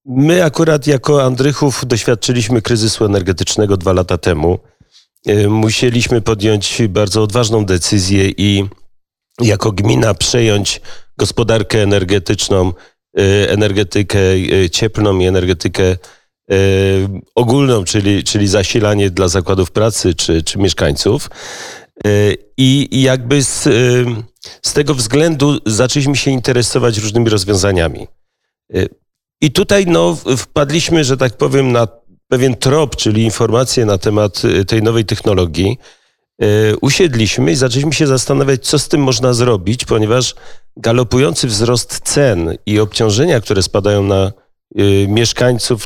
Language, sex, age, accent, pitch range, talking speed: Polish, male, 40-59, native, 105-135 Hz, 110 wpm